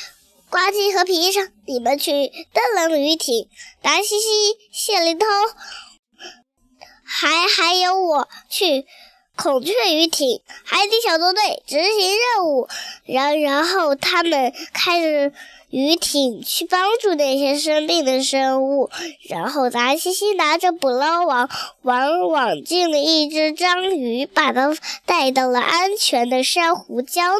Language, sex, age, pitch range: Chinese, male, 10-29, 275-370 Hz